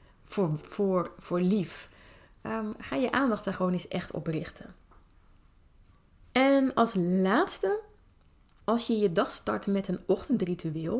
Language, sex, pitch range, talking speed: Dutch, female, 175-230 Hz, 130 wpm